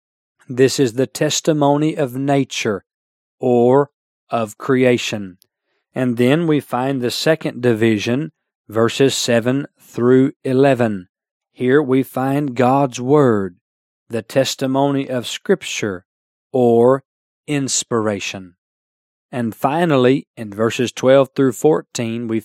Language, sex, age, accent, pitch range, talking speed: English, male, 40-59, American, 115-145 Hz, 105 wpm